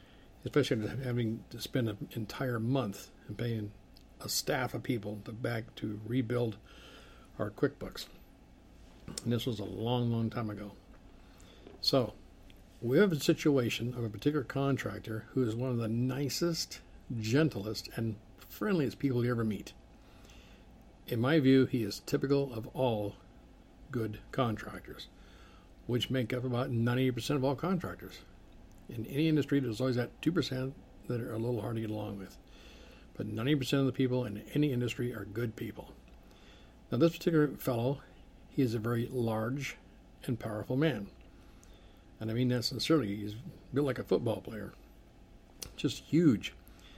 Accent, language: American, English